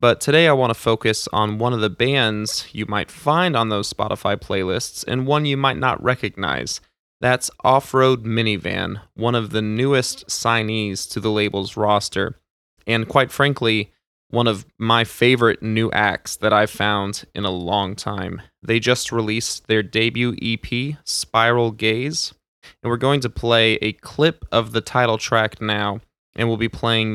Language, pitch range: English, 105-120 Hz